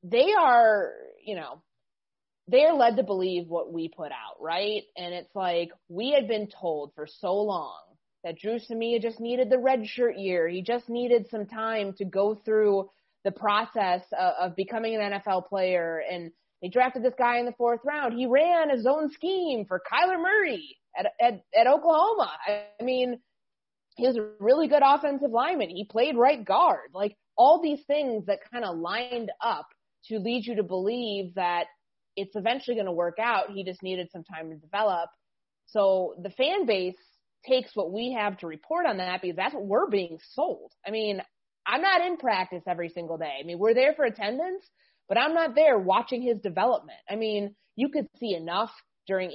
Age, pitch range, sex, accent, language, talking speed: 20-39, 185-255 Hz, female, American, English, 190 wpm